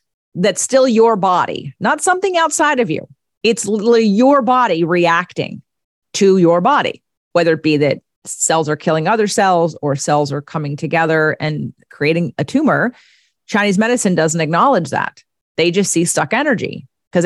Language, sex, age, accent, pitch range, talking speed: English, female, 40-59, American, 160-205 Hz, 160 wpm